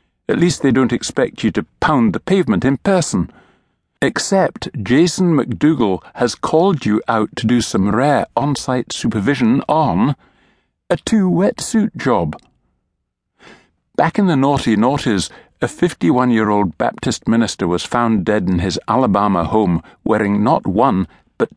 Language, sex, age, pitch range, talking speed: English, male, 60-79, 105-145 Hz, 135 wpm